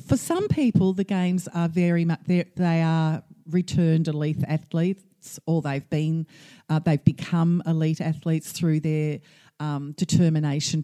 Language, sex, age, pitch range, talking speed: English, female, 50-69, 155-195 Hz, 150 wpm